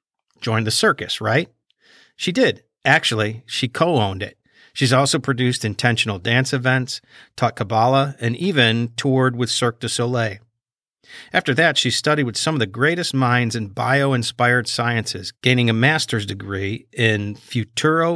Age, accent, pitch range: 50-69, American, 110-140 Hz